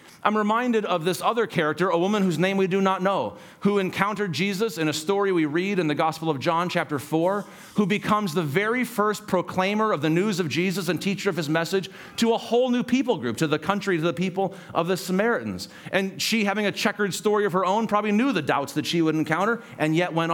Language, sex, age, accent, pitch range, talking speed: English, male, 40-59, American, 155-200 Hz, 235 wpm